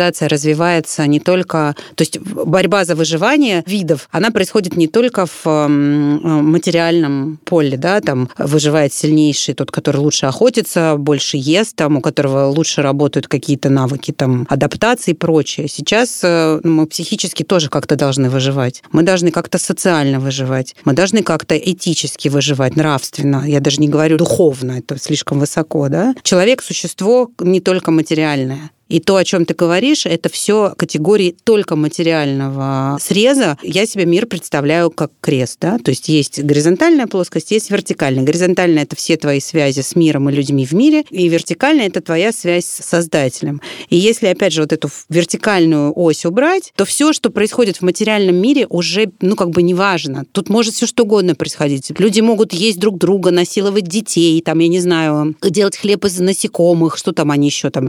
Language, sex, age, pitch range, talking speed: Russian, female, 30-49, 150-195 Hz, 165 wpm